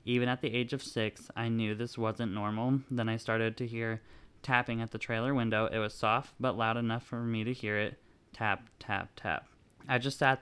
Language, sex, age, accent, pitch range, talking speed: English, male, 20-39, American, 110-125 Hz, 220 wpm